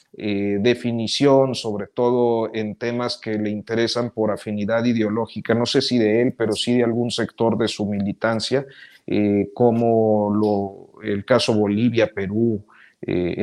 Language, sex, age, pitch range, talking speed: Spanish, male, 40-59, 110-140 Hz, 145 wpm